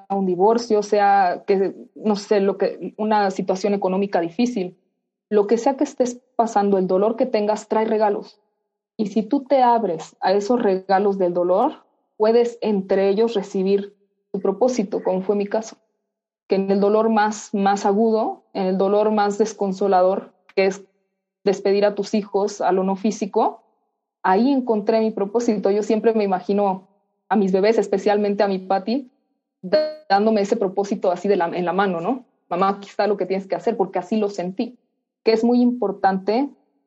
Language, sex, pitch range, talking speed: Spanish, female, 190-225 Hz, 175 wpm